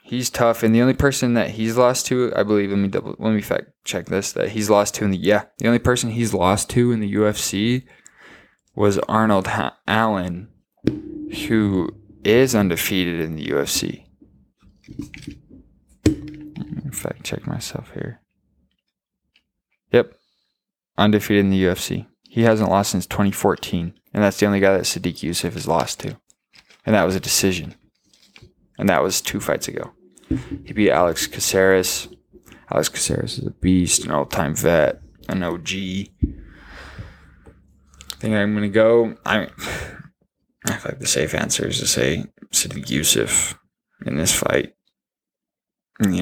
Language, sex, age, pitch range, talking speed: English, male, 20-39, 90-115 Hz, 160 wpm